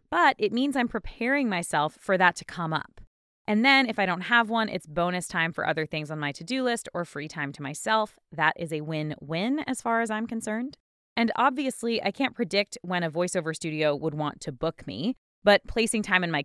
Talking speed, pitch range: 225 wpm, 160-225 Hz